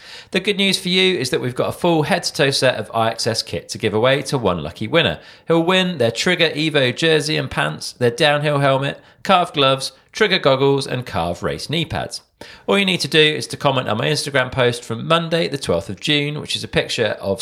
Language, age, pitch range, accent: English, 40-59, 120-165 Hz, British